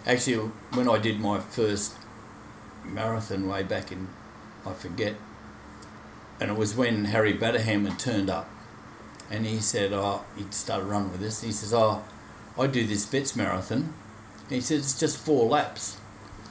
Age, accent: 60-79, Australian